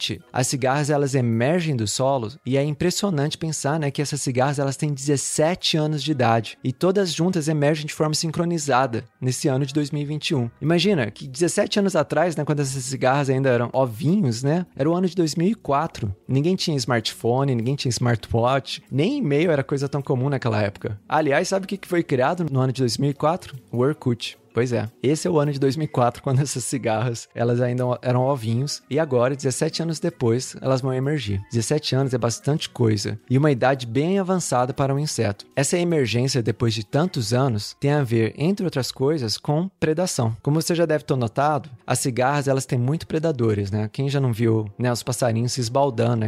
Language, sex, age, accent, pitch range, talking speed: Portuguese, male, 20-39, Brazilian, 120-150 Hz, 190 wpm